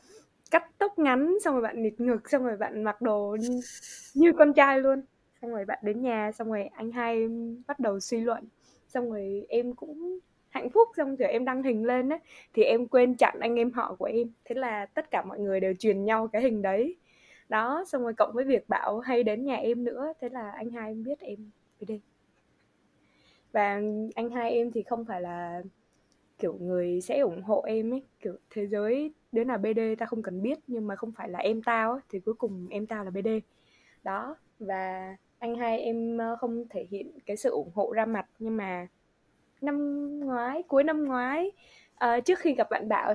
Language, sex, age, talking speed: Vietnamese, female, 10-29, 210 wpm